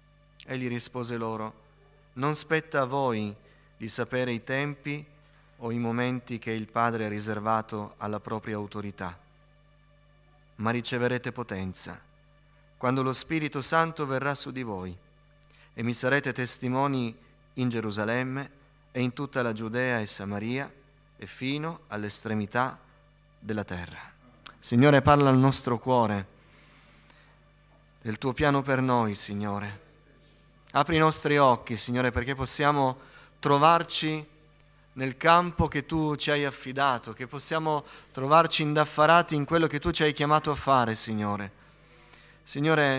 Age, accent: 30-49, native